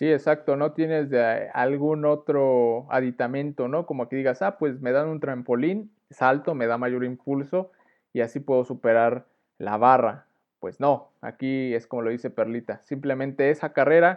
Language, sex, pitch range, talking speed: Spanish, male, 125-155 Hz, 170 wpm